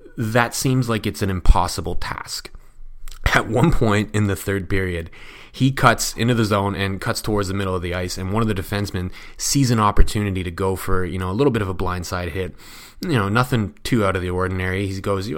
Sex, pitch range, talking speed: male, 95-125 Hz, 225 wpm